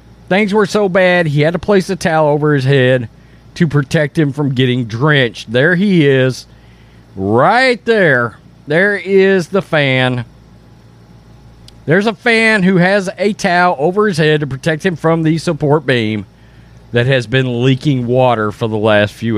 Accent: American